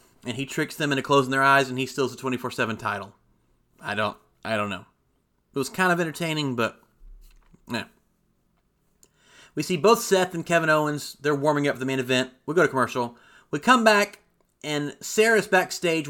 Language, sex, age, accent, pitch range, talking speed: English, male, 30-49, American, 130-170 Hz, 185 wpm